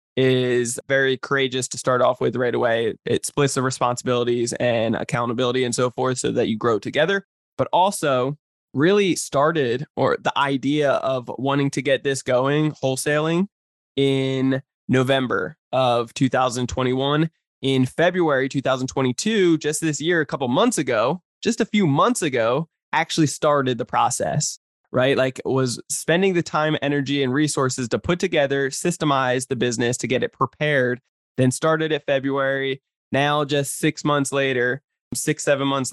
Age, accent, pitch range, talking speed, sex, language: 20-39, American, 130-150 Hz, 150 wpm, male, English